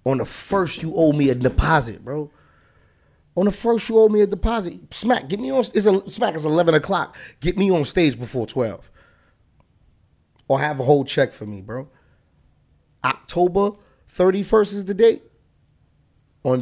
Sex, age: male, 30-49